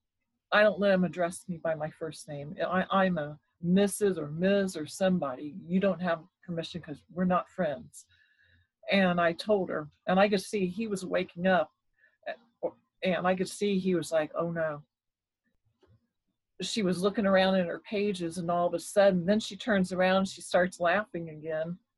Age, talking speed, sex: 40-59, 185 wpm, female